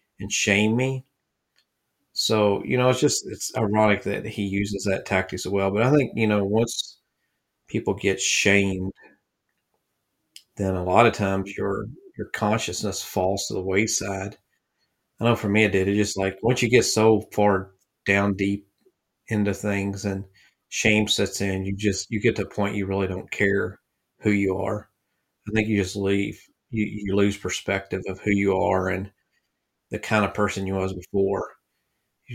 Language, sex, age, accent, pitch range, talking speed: English, male, 40-59, American, 95-110 Hz, 180 wpm